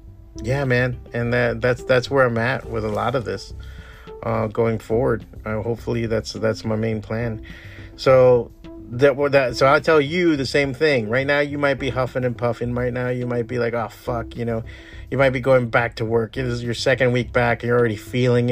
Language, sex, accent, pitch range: English, male, American, 110-140 Hz